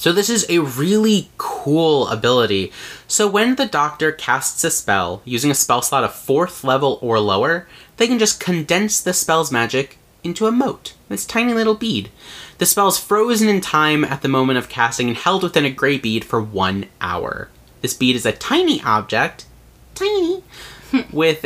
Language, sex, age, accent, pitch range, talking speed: English, male, 30-49, American, 130-195 Hz, 180 wpm